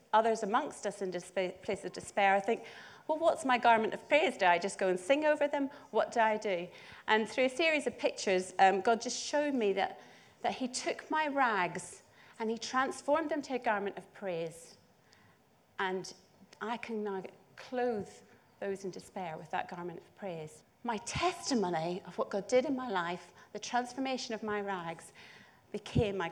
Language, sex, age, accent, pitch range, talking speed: English, female, 40-59, British, 180-230 Hz, 190 wpm